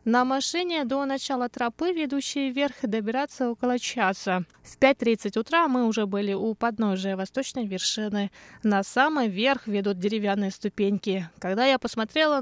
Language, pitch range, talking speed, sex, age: Russian, 200-265 Hz, 140 wpm, female, 20-39